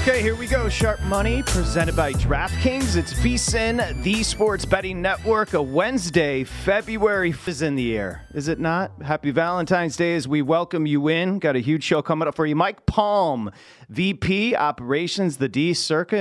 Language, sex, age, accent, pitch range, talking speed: English, male, 30-49, American, 130-170 Hz, 180 wpm